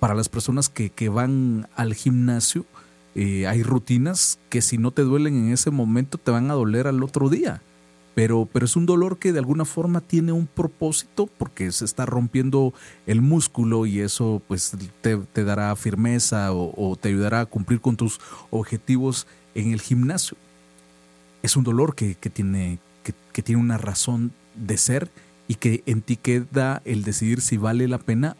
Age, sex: 40-59, male